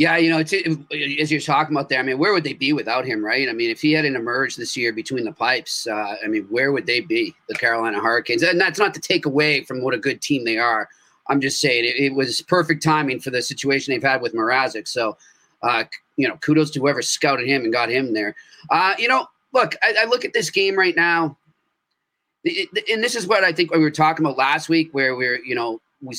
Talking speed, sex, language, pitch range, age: 255 wpm, male, English, 140-165 Hz, 30-49